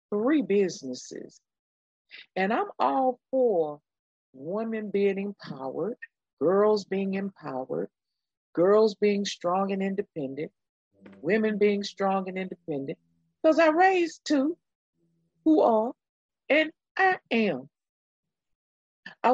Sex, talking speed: female, 100 wpm